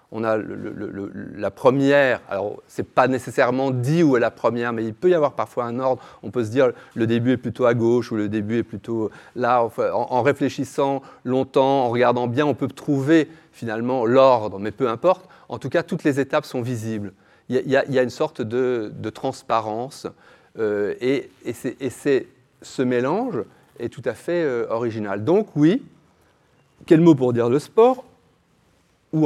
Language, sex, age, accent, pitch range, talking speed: French, male, 40-59, French, 120-165 Hz, 185 wpm